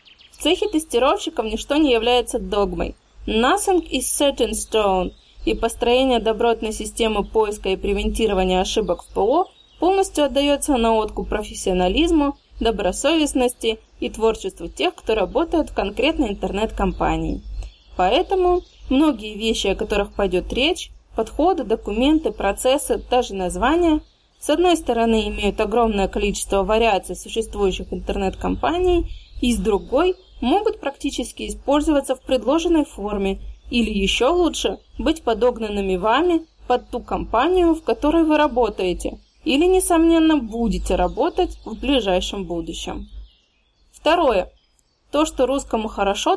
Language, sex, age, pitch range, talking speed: Russian, female, 20-39, 210-305 Hz, 120 wpm